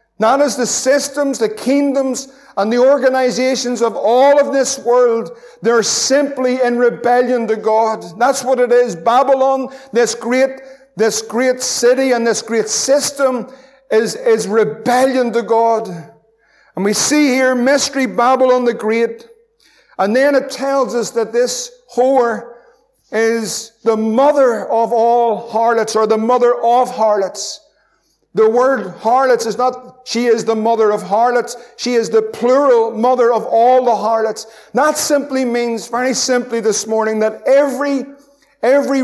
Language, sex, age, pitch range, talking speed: English, male, 50-69, 225-260 Hz, 145 wpm